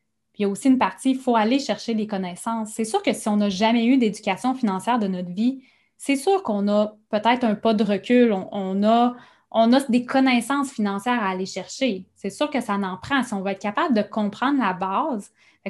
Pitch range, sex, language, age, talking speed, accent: 200-245 Hz, female, French, 20-39, 230 wpm, Canadian